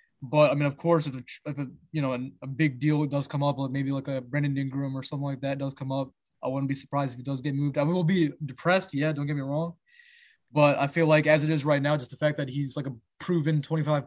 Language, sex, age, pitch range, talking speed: English, male, 20-39, 140-160 Hz, 290 wpm